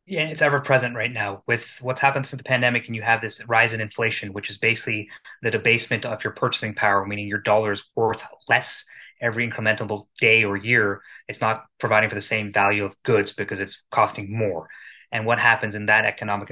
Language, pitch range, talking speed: English, 110-140 Hz, 205 wpm